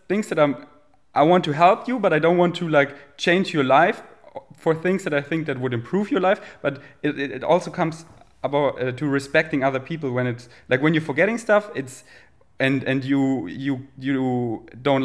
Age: 30-49